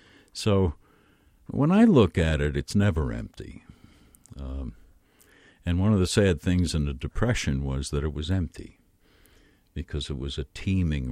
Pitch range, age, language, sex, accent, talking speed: 75-100 Hz, 60-79, English, male, American, 155 wpm